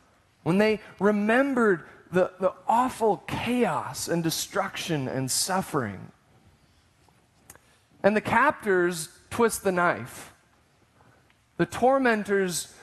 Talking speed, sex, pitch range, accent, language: 90 wpm, male, 130-195 Hz, American, English